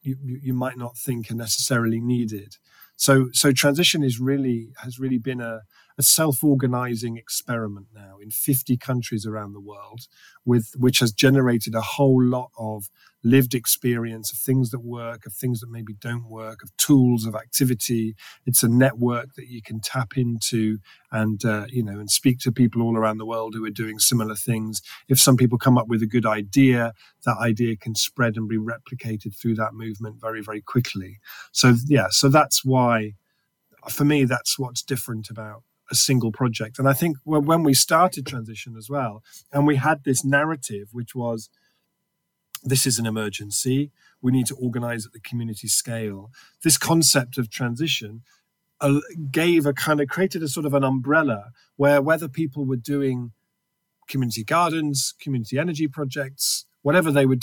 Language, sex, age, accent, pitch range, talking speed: English, male, 40-59, British, 115-140 Hz, 175 wpm